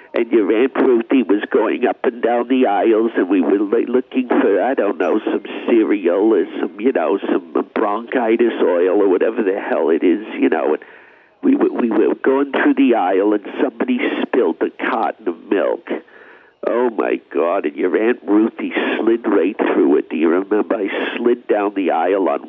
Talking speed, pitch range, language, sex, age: 185 wpm, 315-430 Hz, English, male, 50-69